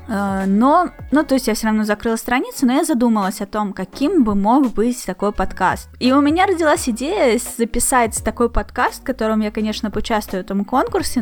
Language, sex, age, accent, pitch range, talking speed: Russian, female, 20-39, native, 205-255 Hz, 195 wpm